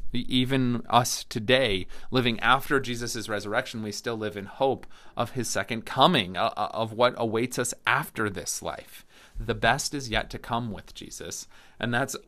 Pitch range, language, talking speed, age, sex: 105-125 Hz, English, 160 wpm, 30-49, male